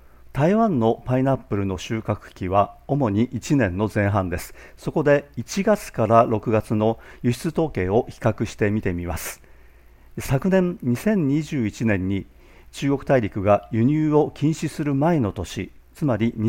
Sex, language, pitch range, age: male, Japanese, 100-140 Hz, 50-69